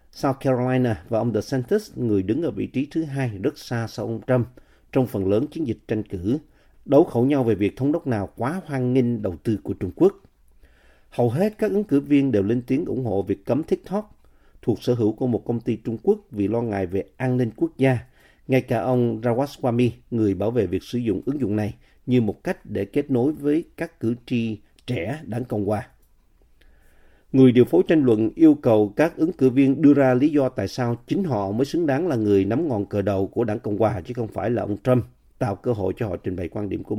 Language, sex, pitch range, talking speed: Vietnamese, male, 105-130 Hz, 235 wpm